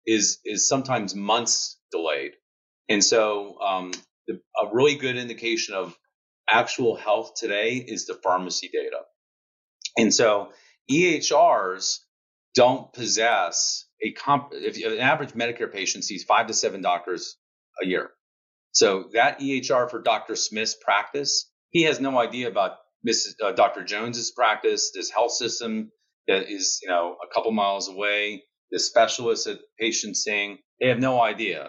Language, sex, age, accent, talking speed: English, male, 30-49, American, 145 wpm